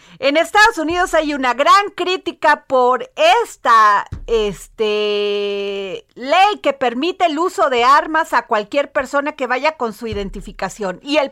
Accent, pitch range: Mexican, 210-300 Hz